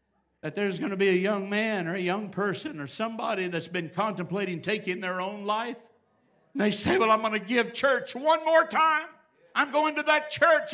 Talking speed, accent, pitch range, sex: 210 wpm, American, 210-260 Hz, male